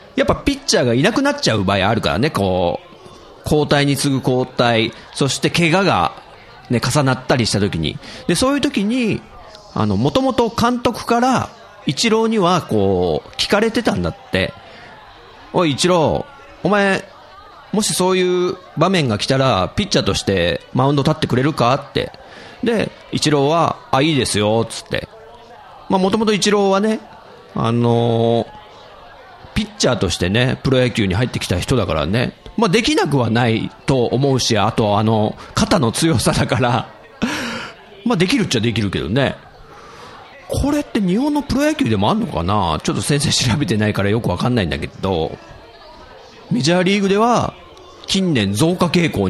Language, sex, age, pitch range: Japanese, male, 40-59, 110-185 Hz